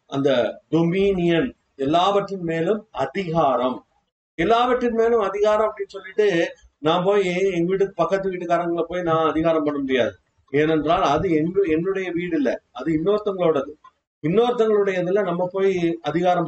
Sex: male